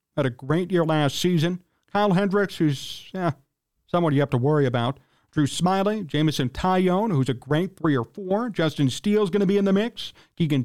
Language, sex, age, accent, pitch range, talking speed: English, male, 40-59, American, 145-195 Hz, 195 wpm